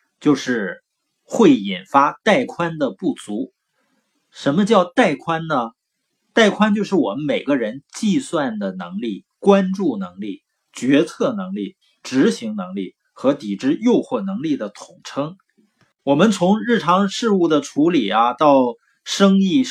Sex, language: male, Chinese